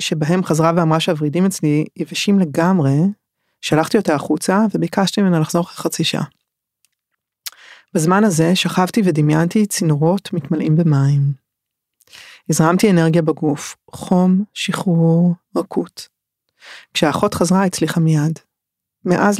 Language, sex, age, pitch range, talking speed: Hebrew, female, 30-49, 160-185 Hz, 100 wpm